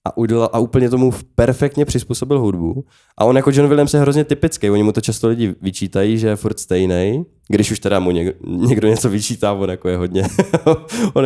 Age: 20-39